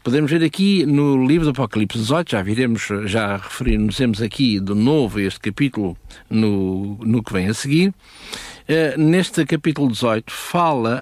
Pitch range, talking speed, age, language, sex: 115-155 Hz, 160 wpm, 60-79, Portuguese, male